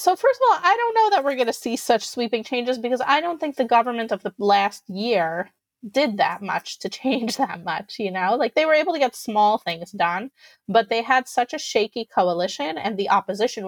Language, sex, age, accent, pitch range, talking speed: English, female, 30-49, American, 200-260 Hz, 235 wpm